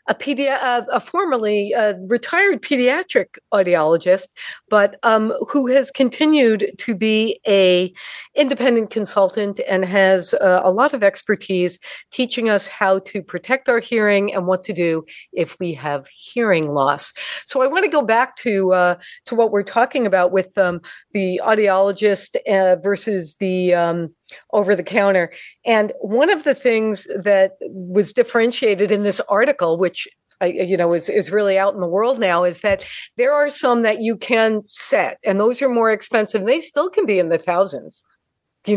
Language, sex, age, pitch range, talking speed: English, female, 50-69, 190-245 Hz, 170 wpm